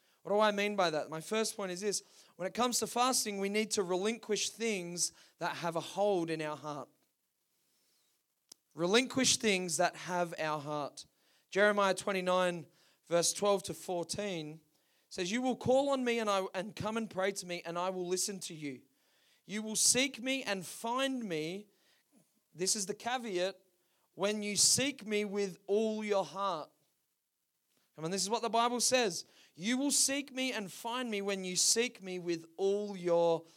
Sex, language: male, English